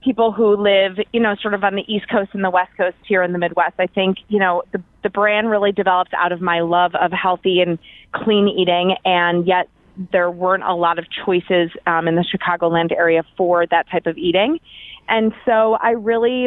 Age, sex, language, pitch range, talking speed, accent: 30-49, female, English, 180-210 Hz, 215 wpm, American